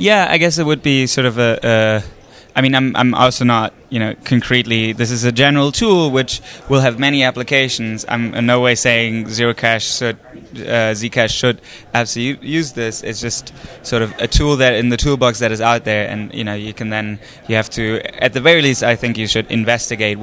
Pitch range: 110-130 Hz